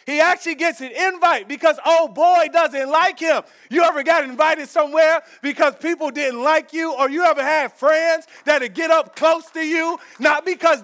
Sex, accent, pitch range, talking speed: male, American, 265-335 Hz, 195 wpm